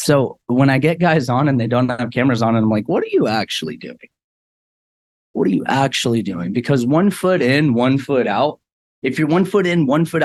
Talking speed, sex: 230 wpm, male